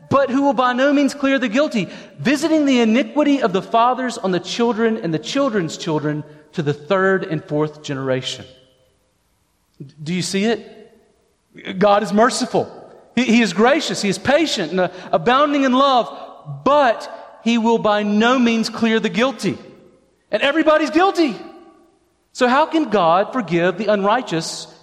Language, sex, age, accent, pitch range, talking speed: English, male, 40-59, American, 160-230 Hz, 155 wpm